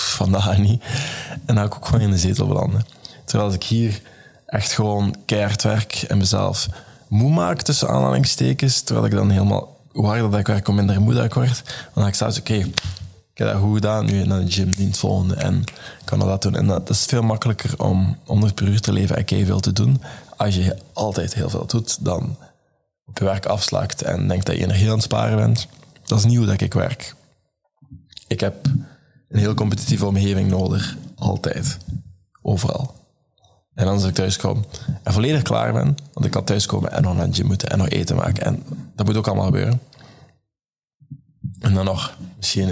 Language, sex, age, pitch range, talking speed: Dutch, male, 20-39, 95-125 Hz, 205 wpm